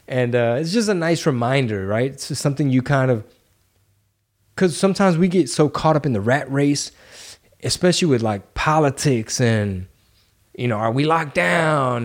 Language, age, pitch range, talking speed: English, 20-39, 110-145 Hz, 180 wpm